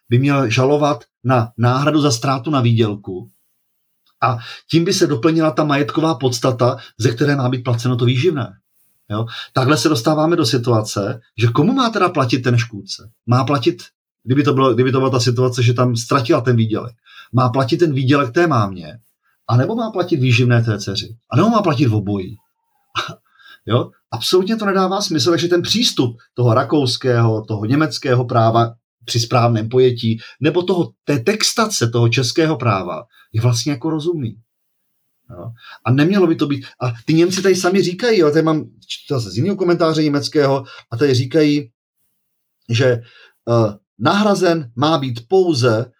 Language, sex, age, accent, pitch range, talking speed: Czech, male, 40-59, native, 120-160 Hz, 155 wpm